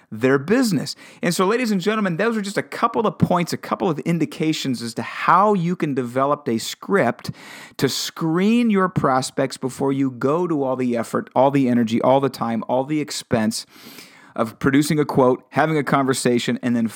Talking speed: 195 wpm